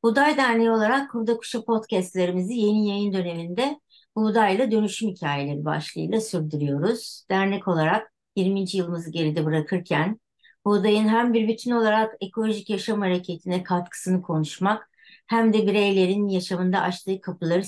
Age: 60-79